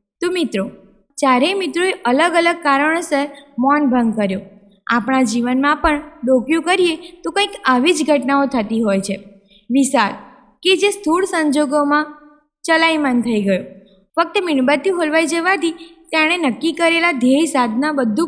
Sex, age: female, 20-39